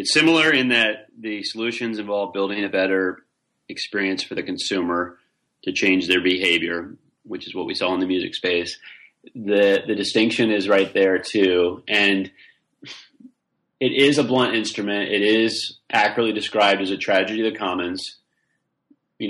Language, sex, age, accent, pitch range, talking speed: English, male, 30-49, American, 95-110 Hz, 160 wpm